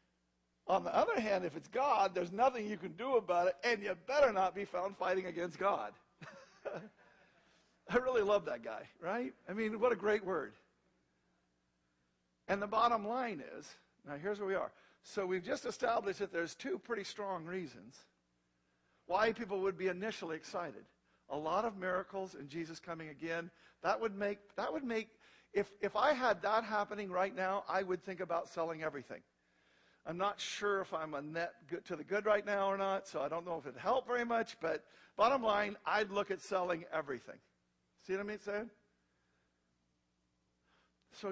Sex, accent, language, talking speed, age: male, American, English, 185 wpm, 50-69